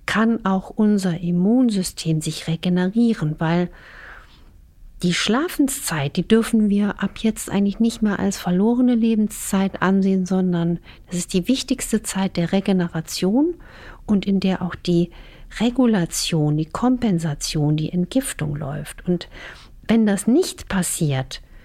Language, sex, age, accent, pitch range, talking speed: German, female, 50-69, German, 170-215 Hz, 125 wpm